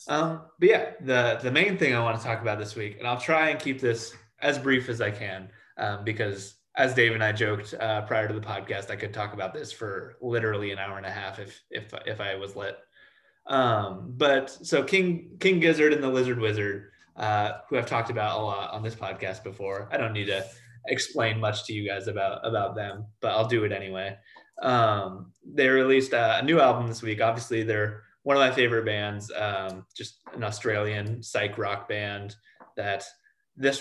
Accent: American